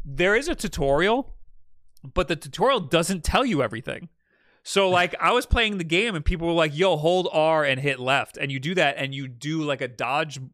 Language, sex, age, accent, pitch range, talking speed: English, male, 30-49, American, 130-170 Hz, 215 wpm